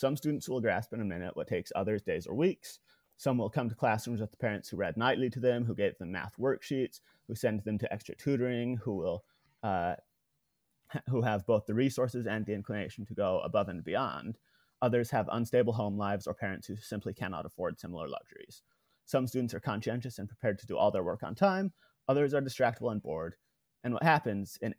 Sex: male